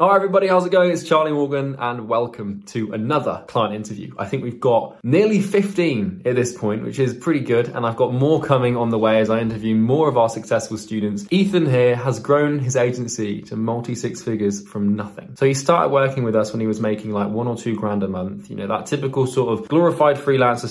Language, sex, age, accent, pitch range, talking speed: English, male, 20-39, British, 110-135 Hz, 230 wpm